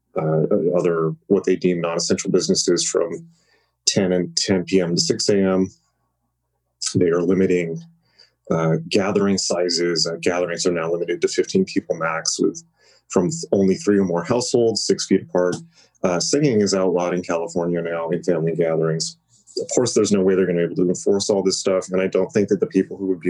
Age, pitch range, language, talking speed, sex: 30-49, 85-105 Hz, English, 195 wpm, male